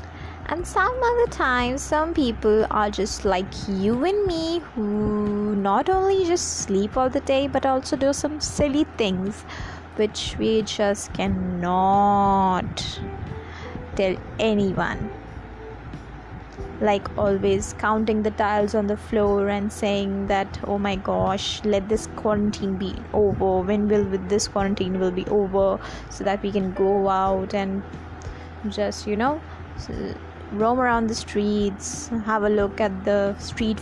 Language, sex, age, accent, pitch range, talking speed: English, female, 20-39, Indian, 195-225 Hz, 140 wpm